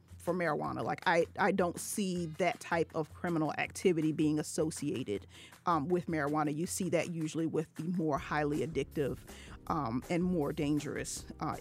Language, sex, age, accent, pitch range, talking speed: English, female, 40-59, American, 155-190 Hz, 160 wpm